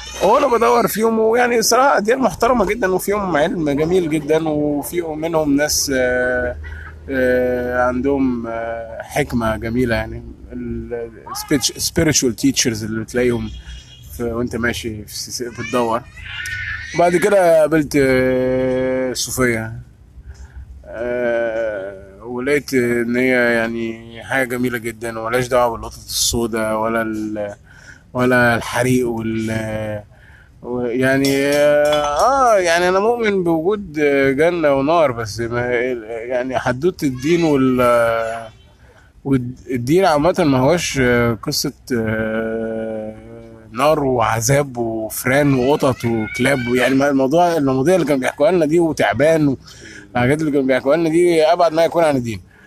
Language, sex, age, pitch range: Arabic, male, 20-39, 115-145 Hz